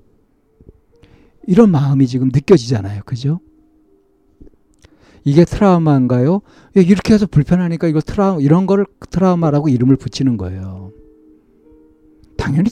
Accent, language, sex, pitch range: native, Korean, male, 120-170 Hz